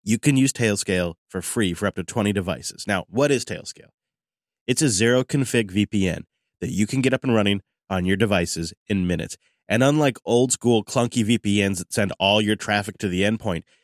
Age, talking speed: 30-49, 200 wpm